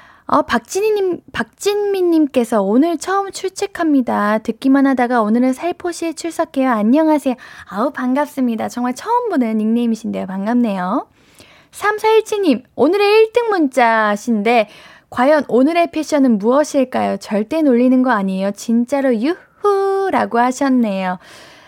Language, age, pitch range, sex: Korean, 10-29, 230-335 Hz, female